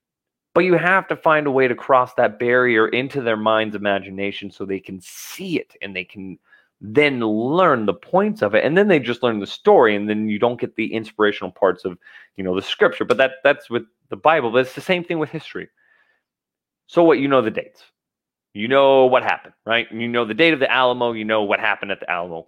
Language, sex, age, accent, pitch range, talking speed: English, male, 30-49, American, 105-140 Hz, 230 wpm